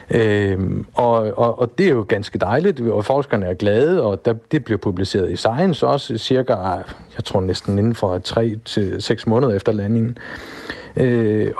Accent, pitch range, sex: native, 110-145 Hz, male